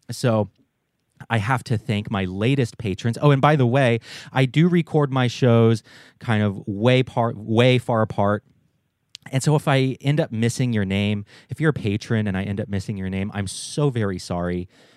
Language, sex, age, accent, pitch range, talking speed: English, male, 30-49, American, 100-130 Hz, 195 wpm